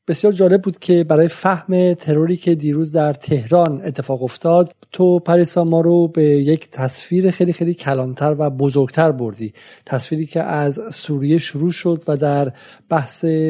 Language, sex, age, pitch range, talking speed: Persian, male, 40-59, 140-170 Hz, 155 wpm